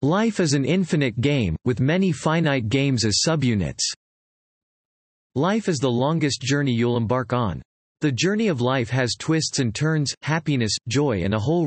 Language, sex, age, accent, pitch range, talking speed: English, male, 40-59, American, 115-150 Hz, 165 wpm